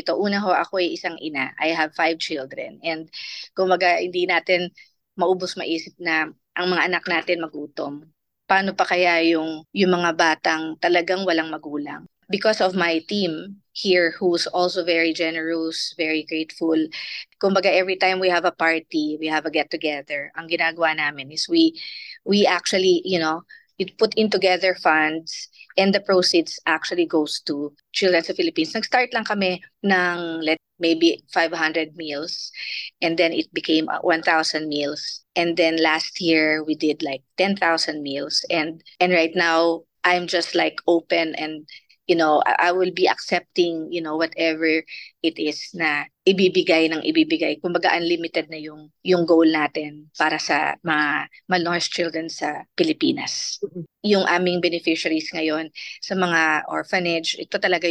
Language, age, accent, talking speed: Filipino, 20-39, native, 155 wpm